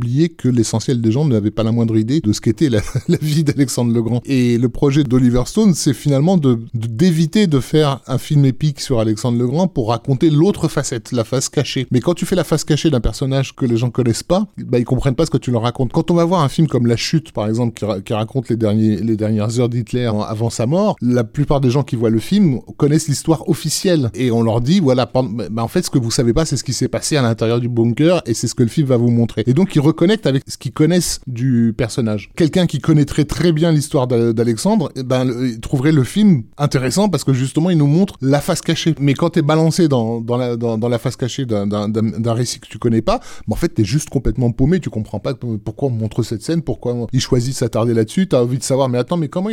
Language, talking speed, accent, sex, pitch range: French, 270 wpm, French, male, 120-160 Hz